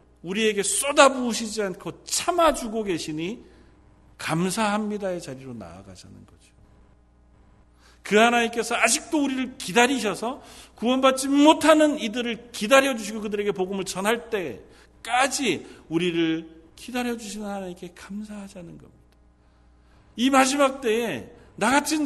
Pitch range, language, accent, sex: 140-230 Hz, Korean, native, male